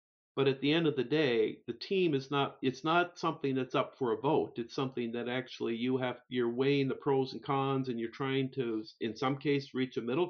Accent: American